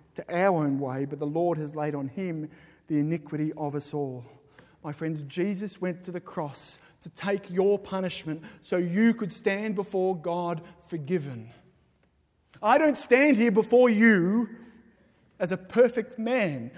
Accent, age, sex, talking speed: Australian, 30-49, male, 155 wpm